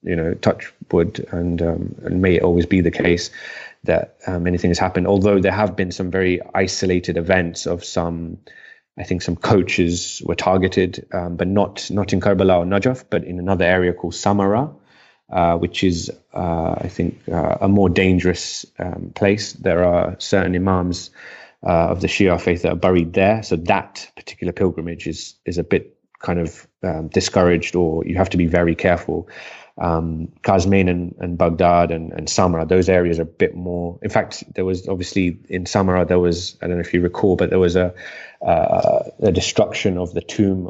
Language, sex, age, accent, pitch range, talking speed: English, male, 20-39, British, 85-95 Hz, 195 wpm